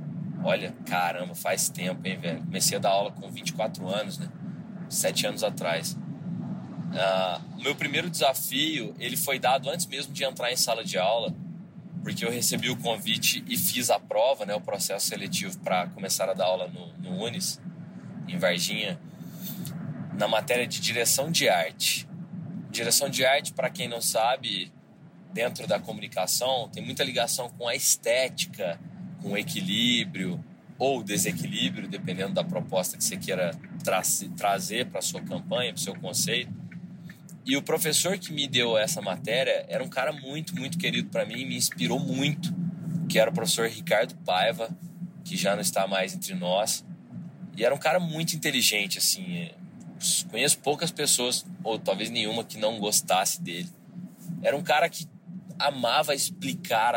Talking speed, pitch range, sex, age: 160 wpm, 155-180 Hz, male, 20-39